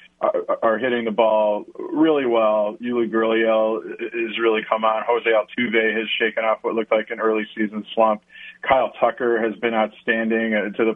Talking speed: 175 wpm